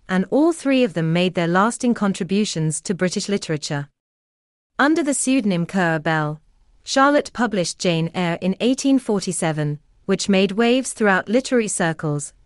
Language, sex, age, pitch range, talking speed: English, female, 30-49, 165-225 Hz, 140 wpm